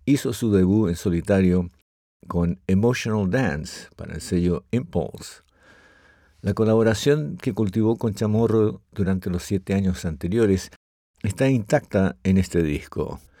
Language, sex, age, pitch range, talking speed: Spanish, male, 60-79, 90-110 Hz, 125 wpm